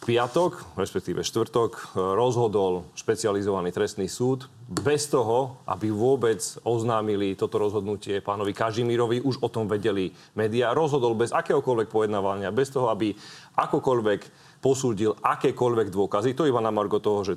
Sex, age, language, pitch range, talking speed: male, 30-49, Slovak, 105-130 Hz, 135 wpm